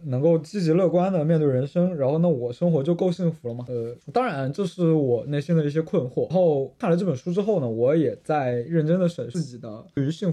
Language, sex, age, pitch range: Chinese, male, 20-39, 125-165 Hz